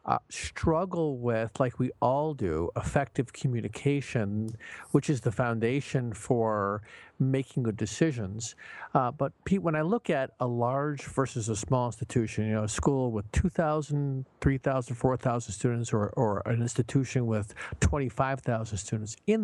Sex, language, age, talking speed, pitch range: male, English, 50-69, 145 wpm, 120-155 Hz